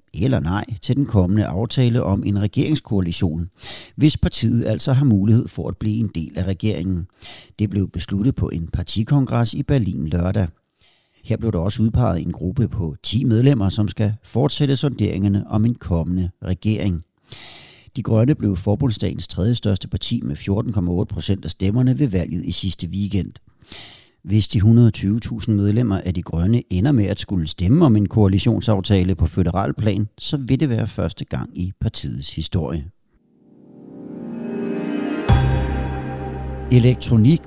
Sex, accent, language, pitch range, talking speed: male, native, Danish, 90-125 Hz, 145 wpm